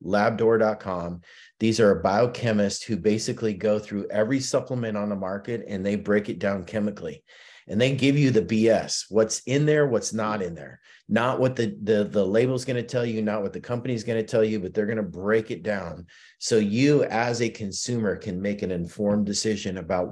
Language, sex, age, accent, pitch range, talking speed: English, male, 30-49, American, 100-115 Hz, 205 wpm